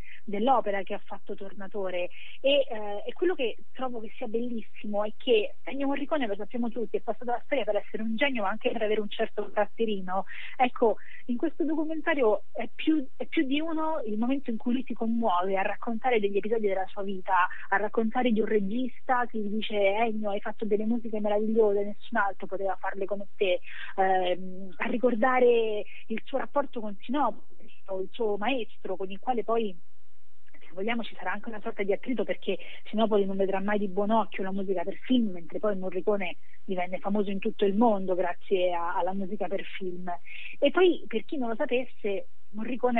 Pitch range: 195-240 Hz